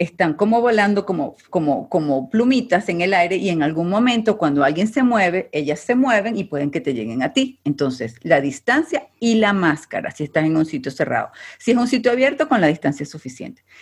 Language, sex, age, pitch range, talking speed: Spanish, female, 40-59, 150-225 Hz, 215 wpm